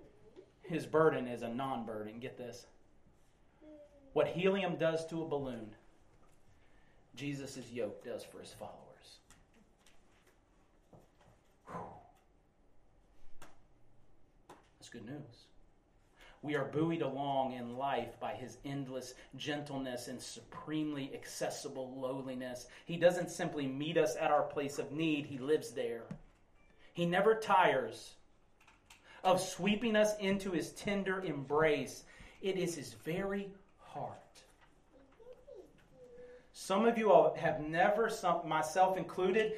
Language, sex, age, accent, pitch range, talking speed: English, male, 40-59, American, 130-185 Hz, 110 wpm